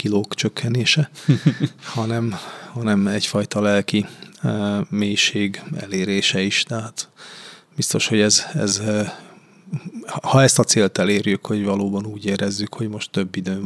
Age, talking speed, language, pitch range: 20-39, 125 wpm, Hungarian, 105-135 Hz